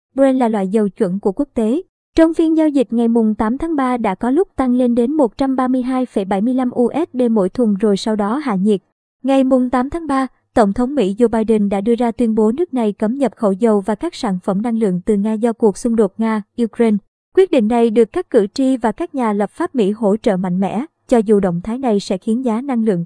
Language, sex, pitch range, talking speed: Vietnamese, male, 215-265 Hz, 240 wpm